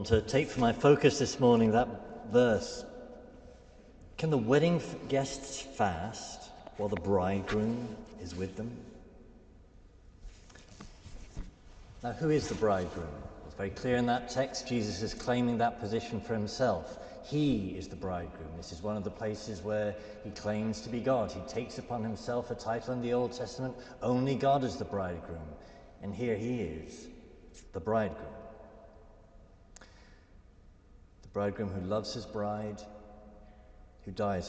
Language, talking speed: English, 145 wpm